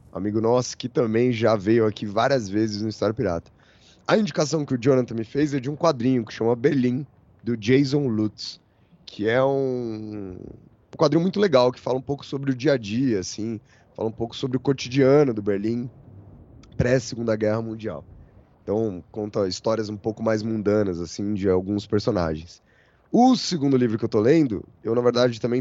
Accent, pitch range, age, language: Brazilian, 100-125 Hz, 20-39, Portuguese